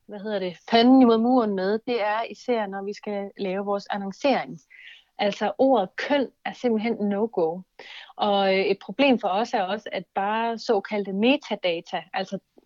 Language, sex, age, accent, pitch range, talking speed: Danish, female, 30-49, native, 190-245 Hz, 160 wpm